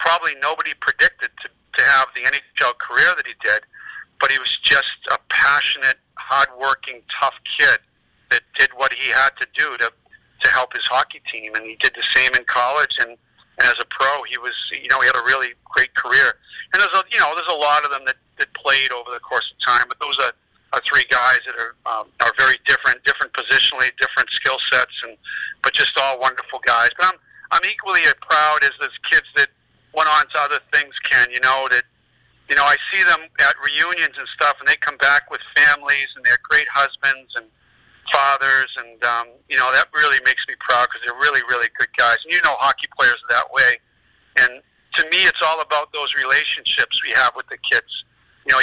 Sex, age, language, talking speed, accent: male, 50-69, English, 215 wpm, American